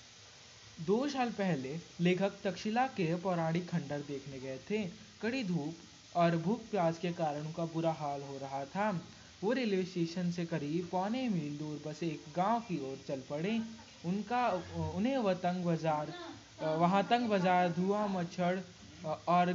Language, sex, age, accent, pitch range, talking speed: Hindi, male, 20-39, native, 155-200 Hz, 155 wpm